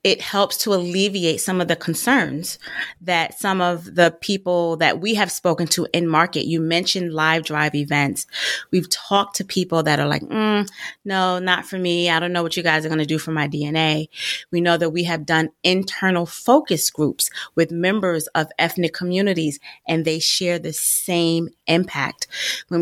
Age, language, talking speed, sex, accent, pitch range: 30-49, English, 185 wpm, female, American, 160-180 Hz